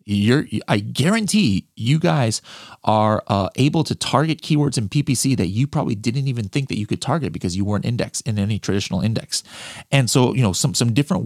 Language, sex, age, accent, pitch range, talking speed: English, male, 30-49, American, 105-140 Hz, 205 wpm